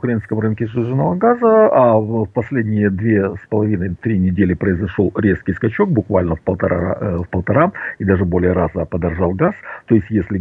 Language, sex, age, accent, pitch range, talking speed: Russian, male, 50-69, native, 95-140 Hz, 155 wpm